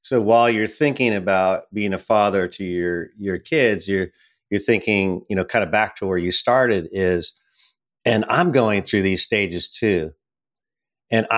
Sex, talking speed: male, 175 wpm